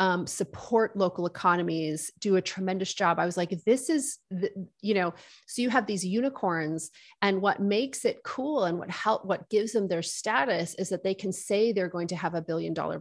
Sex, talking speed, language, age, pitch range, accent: female, 210 wpm, English, 30-49, 170-205 Hz, American